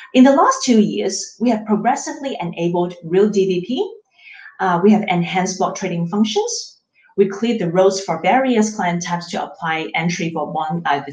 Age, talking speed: 30-49, 175 wpm